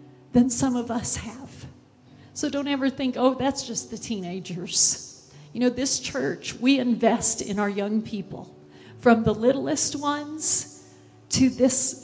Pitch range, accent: 180-260 Hz, American